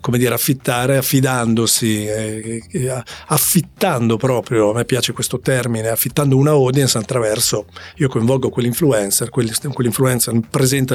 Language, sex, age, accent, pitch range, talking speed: Italian, male, 40-59, native, 115-140 Hz, 110 wpm